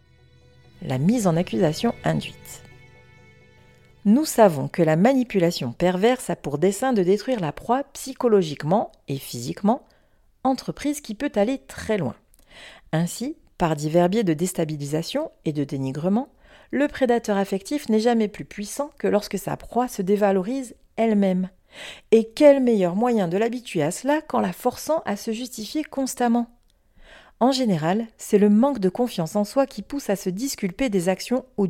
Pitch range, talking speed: 170-240 Hz, 155 wpm